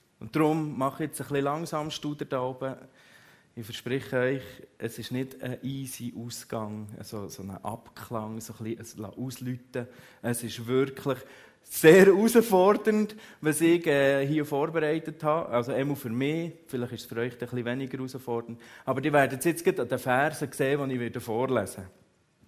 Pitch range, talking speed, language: 115-145 Hz, 170 wpm, German